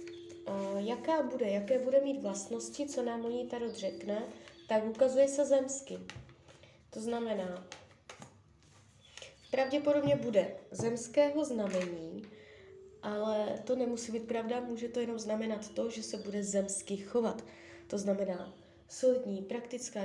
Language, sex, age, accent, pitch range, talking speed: Czech, female, 20-39, native, 190-245 Hz, 125 wpm